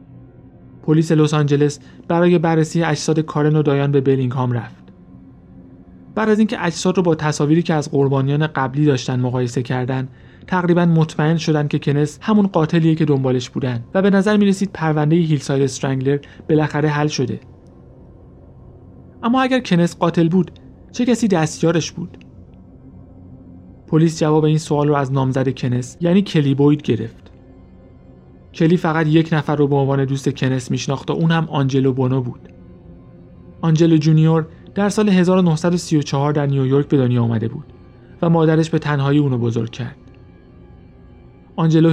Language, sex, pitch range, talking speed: Persian, male, 130-165 Hz, 145 wpm